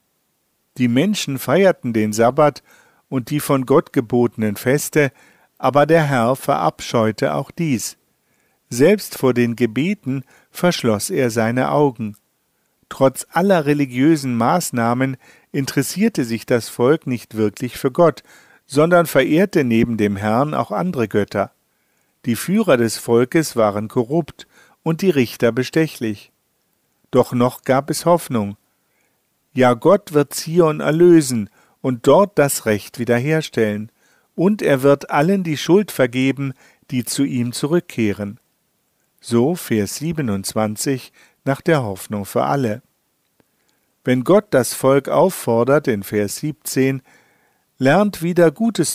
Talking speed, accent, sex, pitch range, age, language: 125 wpm, German, male, 115-155 Hz, 50-69, German